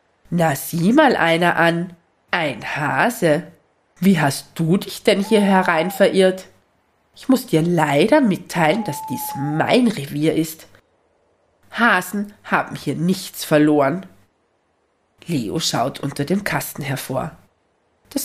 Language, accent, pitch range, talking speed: German, German, 150-190 Hz, 120 wpm